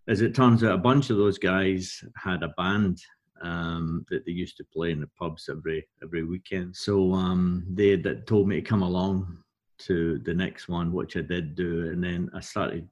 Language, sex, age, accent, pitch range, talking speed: English, male, 50-69, British, 95-115 Hz, 210 wpm